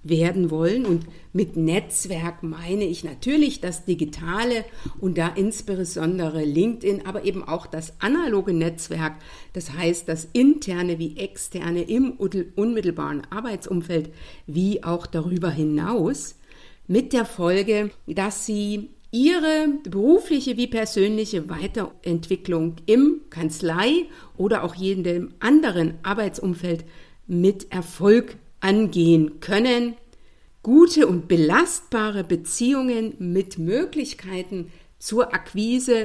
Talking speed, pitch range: 105 wpm, 170-220 Hz